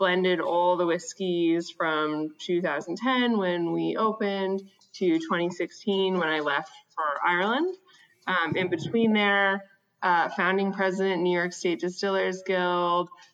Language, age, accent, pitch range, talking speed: English, 20-39, American, 165-195 Hz, 125 wpm